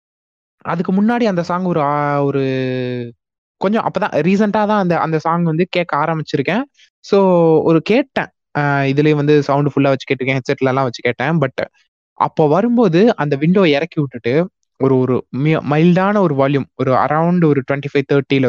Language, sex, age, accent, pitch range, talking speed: Tamil, male, 20-39, native, 135-195 Hz, 155 wpm